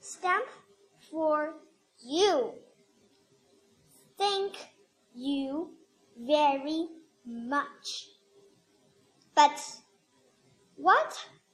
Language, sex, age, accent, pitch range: Chinese, male, 10-29, American, 285-390 Hz